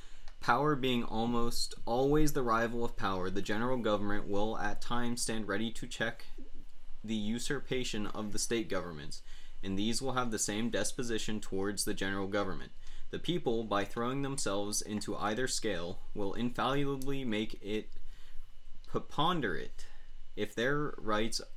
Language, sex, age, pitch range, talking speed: English, male, 20-39, 100-120 Hz, 140 wpm